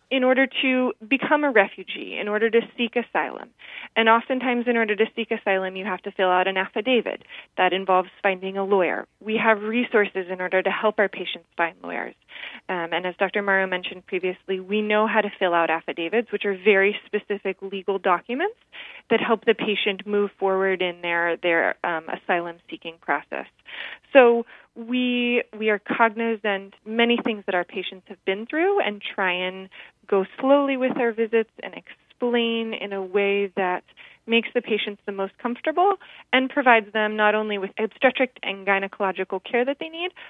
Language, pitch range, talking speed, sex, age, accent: English, 185-230 Hz, 180 wpm, female, 20-39, American